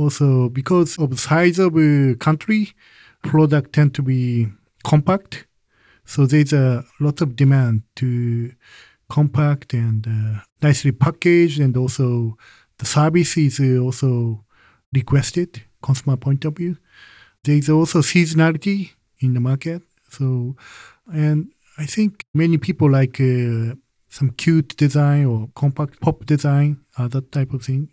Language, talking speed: English, 135 wpm